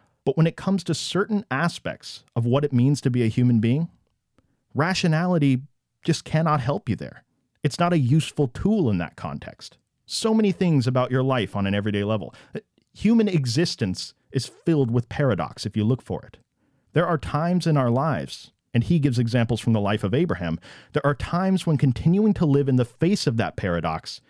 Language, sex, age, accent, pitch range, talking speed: English, male, 40-59, American, 115-150 Hz, 195 wpm